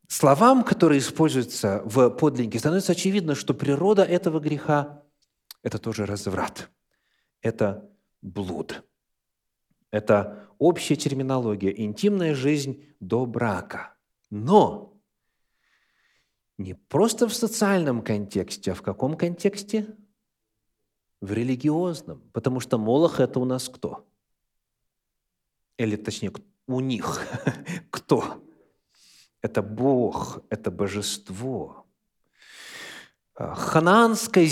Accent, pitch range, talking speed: native, 110-150 Hz, 90 wpm